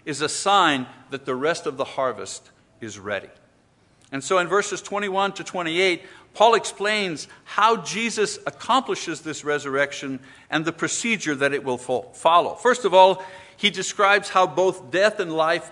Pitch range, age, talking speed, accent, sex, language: 160-205 Hz, 50-69, 160 wpm, American, male, English